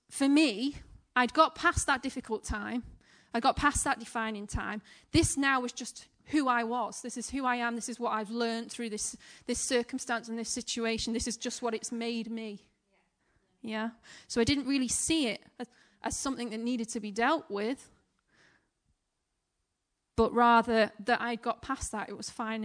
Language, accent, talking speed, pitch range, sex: English, British, 190 wpm, 225-270 Hz, female